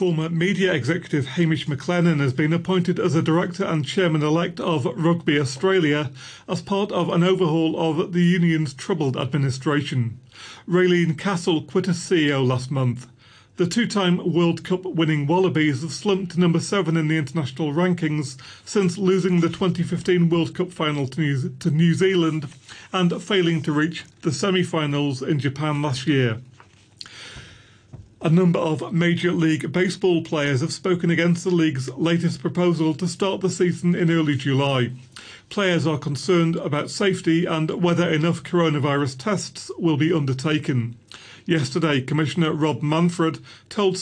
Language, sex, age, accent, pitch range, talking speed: English, male, 40-59, British, 145-180 Hz, 145 wpm